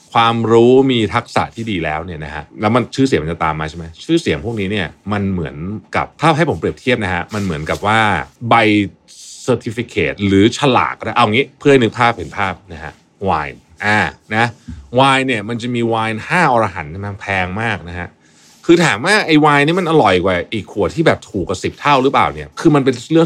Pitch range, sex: 85-130 Hz, male